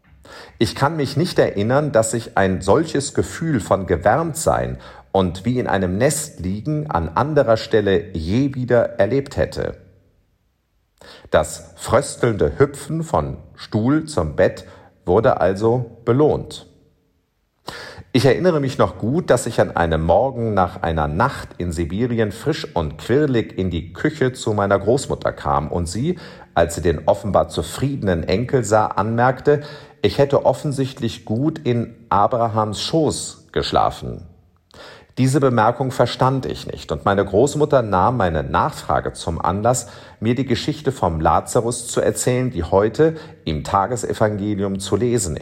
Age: 40-59